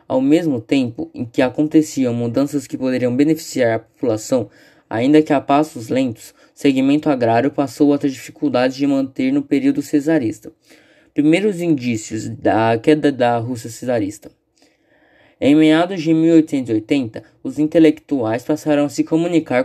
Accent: Brazilian